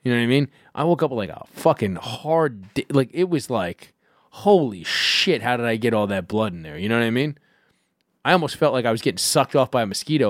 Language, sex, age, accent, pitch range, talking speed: English, male, 30-49, American, 110-155 Hz, 270 wpm